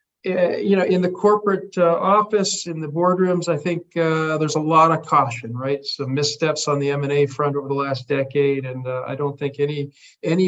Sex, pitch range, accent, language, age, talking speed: male, 140-160 Hz, American, English, 50-69, 205 wpm